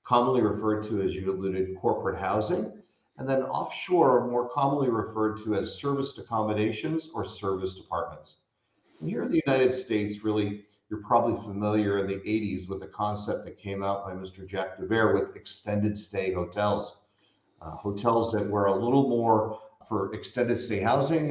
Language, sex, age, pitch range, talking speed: English, male, 50-69, 95-115 Hz, 165 wpm